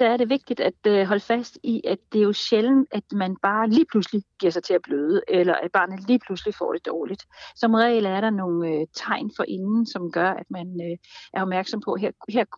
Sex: female